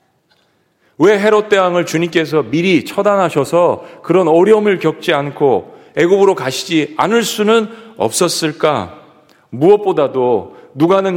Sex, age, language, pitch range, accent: male, 40-59, Korean, 150-200 Hz, native